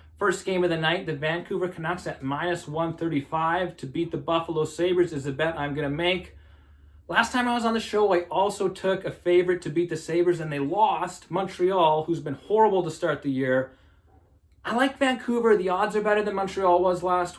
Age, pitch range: 30-49, 135-175 Hz